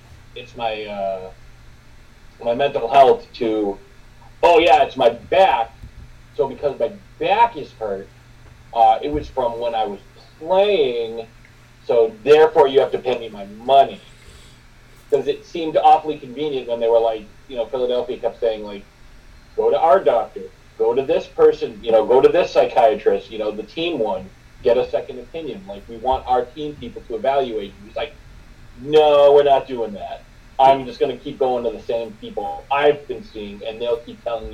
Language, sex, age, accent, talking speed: English, male, 40-59, American, 180 wpm